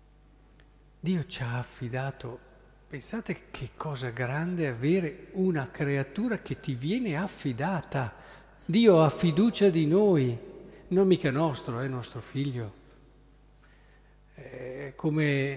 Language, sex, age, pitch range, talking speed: Italian, male, 50-69, 130-190 Hz, 110 wpm